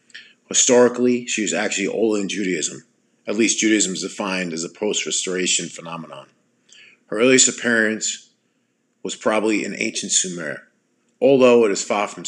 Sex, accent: male, American